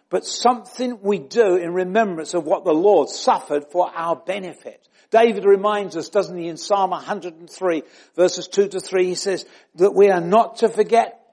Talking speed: 180 wpm